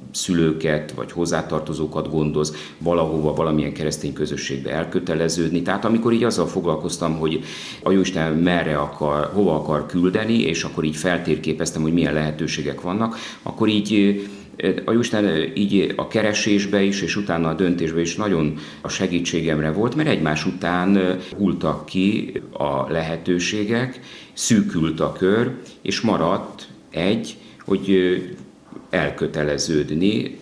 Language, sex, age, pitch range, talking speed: Hungarian, male, 50-69, 75-95 Hz, 125 wpm